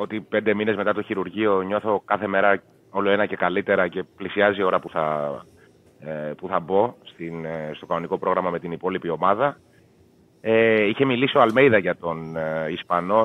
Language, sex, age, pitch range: Greek, male, 30-49, 90-110 Hz